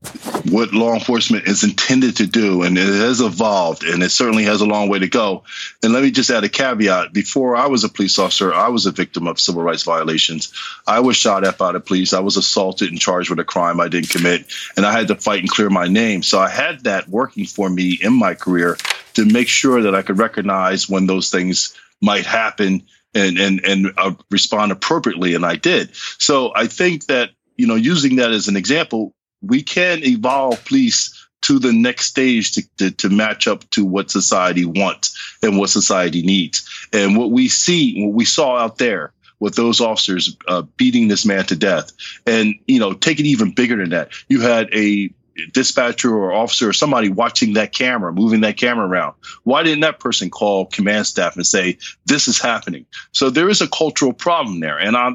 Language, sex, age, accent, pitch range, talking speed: English, male, 40-59, American, 95-130 Hz, 210 wpm